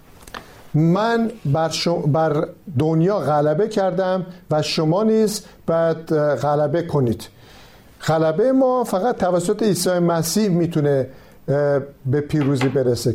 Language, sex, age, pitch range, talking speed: Persian, male, 50-69, 150-195 Hz, 100 wpm